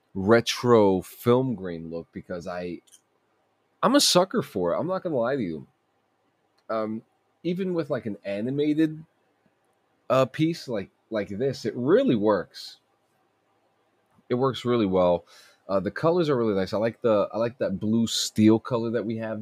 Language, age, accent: English, 30-49, American